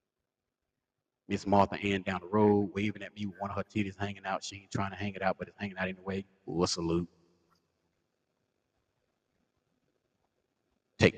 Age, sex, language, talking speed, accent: 30-49, male, English, 170 wpm, American